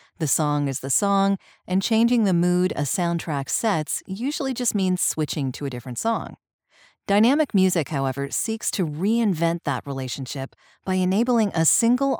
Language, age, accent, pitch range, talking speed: English, 40-59, American, 150-210 Hz, 160 wpm